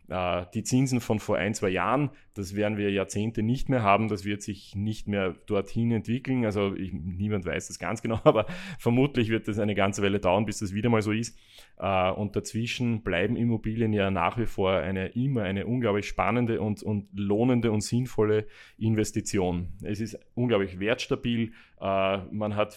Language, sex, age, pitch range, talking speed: German, male, 30-49, 95-115 Hz, 175 wpm